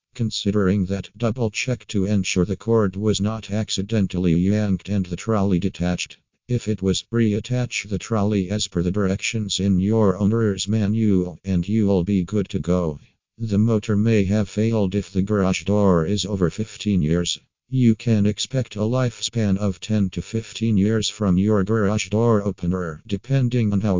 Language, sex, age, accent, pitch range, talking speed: English, male, 50-69, American, 95-110 Hz, 170 wpm